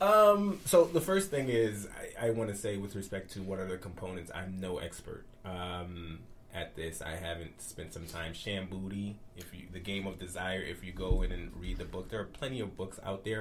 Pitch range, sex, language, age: 90-110 Hz, male, English, 20-39